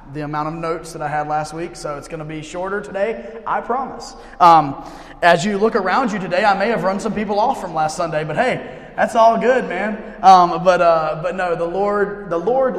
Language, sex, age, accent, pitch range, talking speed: English, male, 30-49, American, 160-205 Hz, 235 wpm